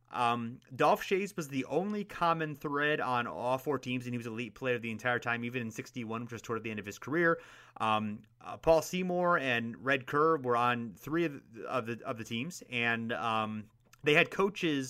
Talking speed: 220 wpm